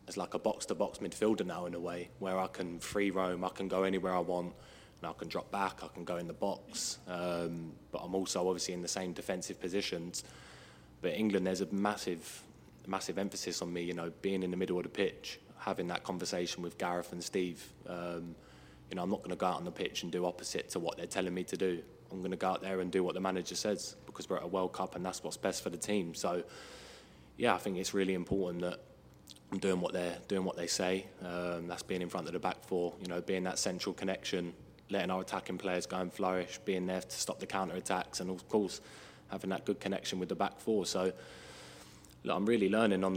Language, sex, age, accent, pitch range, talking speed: English, male, 20-39, British, 85-95 Hz, 240 wpm